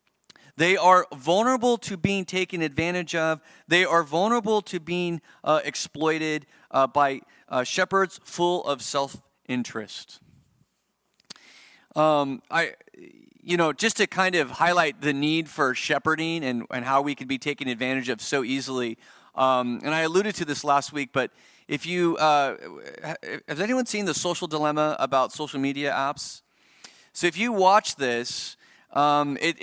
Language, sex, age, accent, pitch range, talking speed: English, male, 30-49, American, 140-175 Hz, 150 wpm